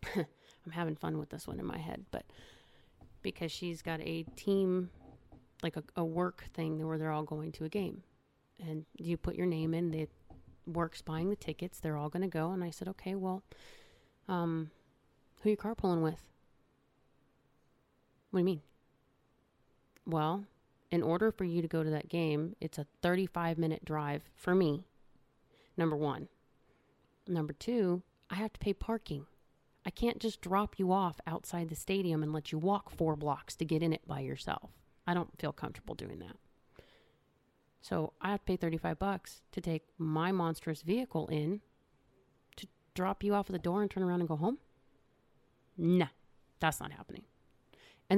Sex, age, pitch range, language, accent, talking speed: female, 30-49, 155-190 Hz, English, American, 175 wpm